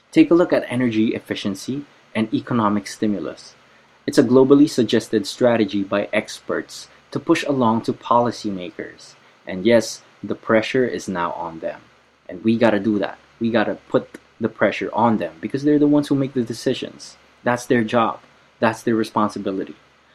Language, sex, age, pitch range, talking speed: English, male, 20-39, 105-125 Hz, 170 wpm